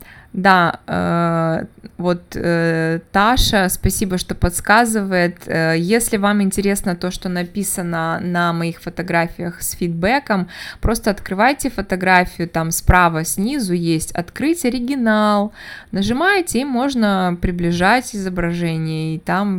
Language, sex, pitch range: Russian, female, 170-205 Hz